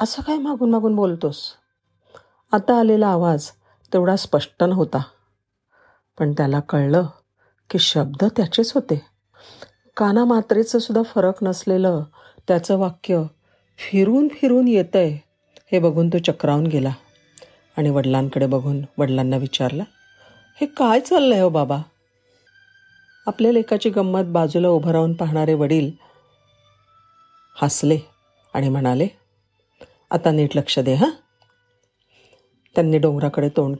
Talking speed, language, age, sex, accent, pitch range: 105 wpm, Marathi, 50-69, female, native, 135-220 Hz